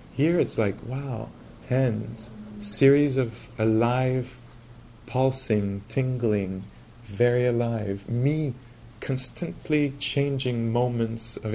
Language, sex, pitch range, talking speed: English, male, 110-120 Hz, 90 wpm